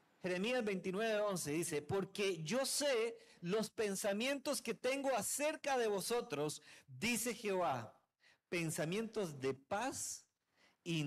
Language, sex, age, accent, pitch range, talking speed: Spanish, male, 40-59, Mexican, 160-215 Hz, 110 wpm